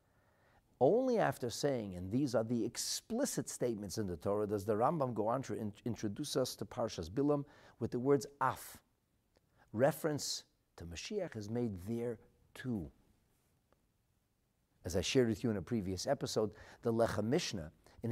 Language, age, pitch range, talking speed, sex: English, 50-69, 110-180 Hz, 160 wpm, male